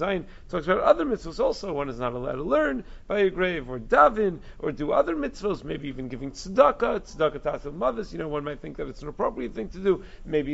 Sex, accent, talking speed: male, American, 230 wpm